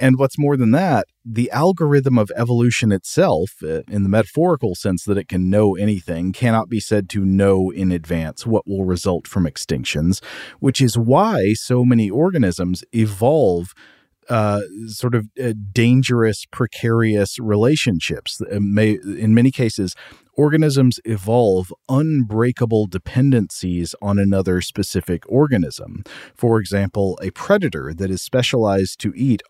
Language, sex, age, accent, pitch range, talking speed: English, male, 40-59, American, 95-115 Hz, 140 wpm